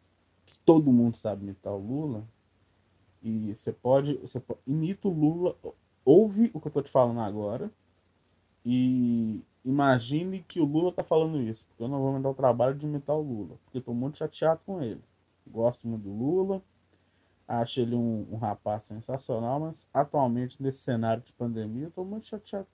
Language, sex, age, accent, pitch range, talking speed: Portuguese, male, 20-39, Brazilian, 100-155 Hz, 175 wpm